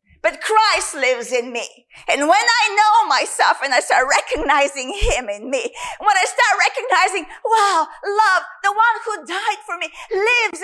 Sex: female